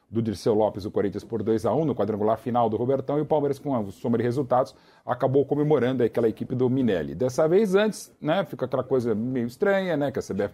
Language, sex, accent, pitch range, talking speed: Portuguese, male, Brazilian, 120-160 Hz, 230 wpm